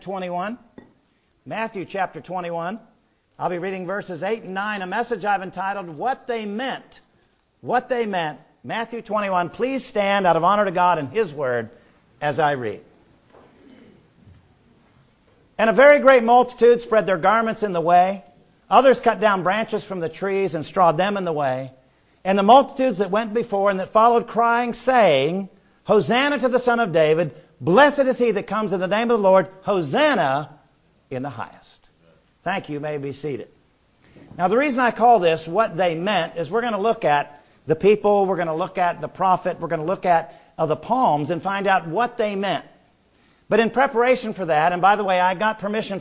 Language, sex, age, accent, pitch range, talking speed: English, male, 50-69, American, 175-230 Hz, 195 wpm